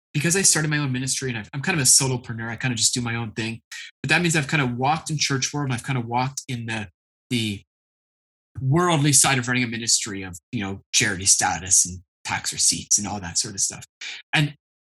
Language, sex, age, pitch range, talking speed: English, male, 20-39, 120-155 Hz, 240 wpm